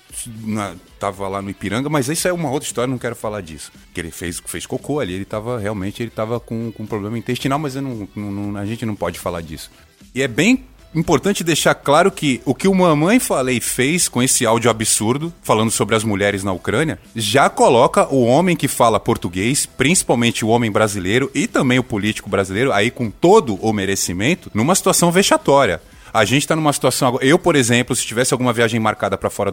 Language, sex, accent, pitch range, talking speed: Portuguese, male, Brazilian, 115-180 Hz, 210 wpm